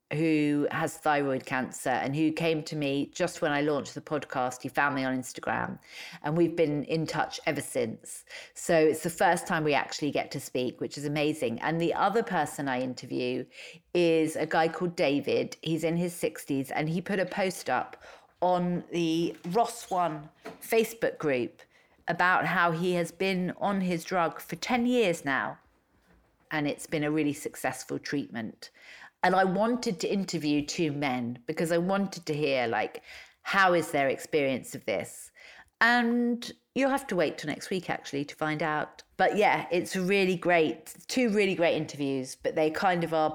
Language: English